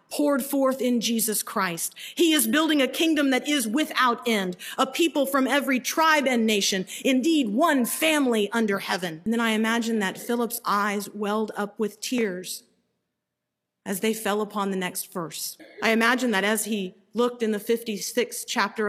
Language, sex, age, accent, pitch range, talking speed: English, female, 40-59, American, 200-250 Hz, 170 wpm